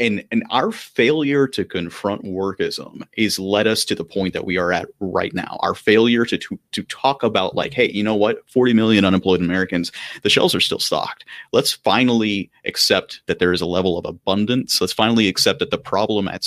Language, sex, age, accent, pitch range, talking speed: English, male, 30-49, American, 90-110 Hz, 210 wpm